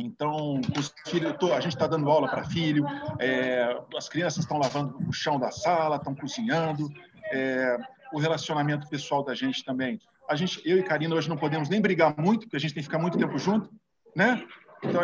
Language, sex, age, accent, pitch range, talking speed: Portuguese, male, 50-69, Brazilian, 135-185 Hz, 200 wpm